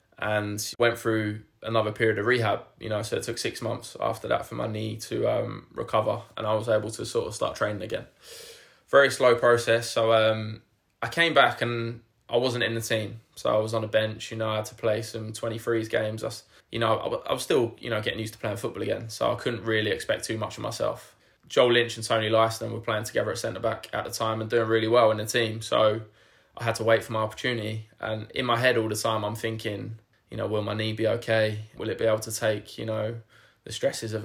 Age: 20-39